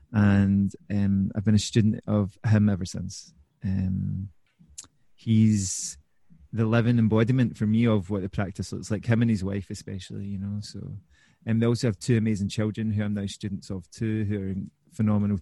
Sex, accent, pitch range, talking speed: male, British, 100-115 Hz, 185 wpm